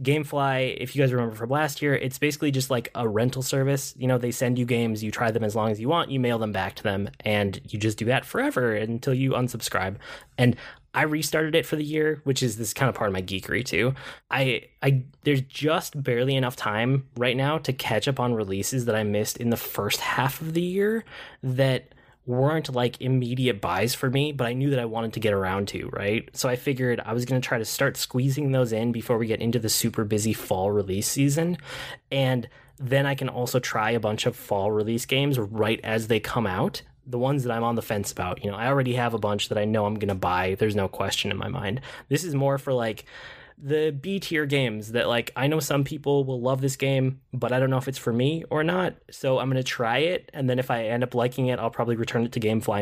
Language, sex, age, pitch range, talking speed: English, male, 10-29, 110-135 Hz, 250 wpm